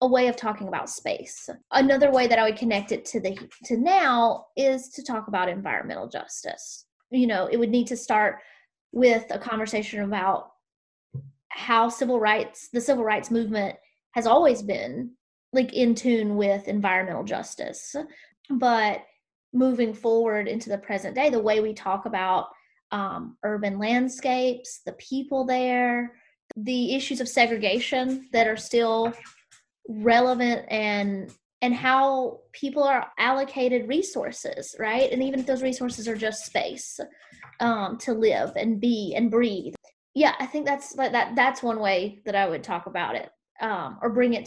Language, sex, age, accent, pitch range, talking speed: English, female, 20-39, American, 210-255 Hz, 160 wpm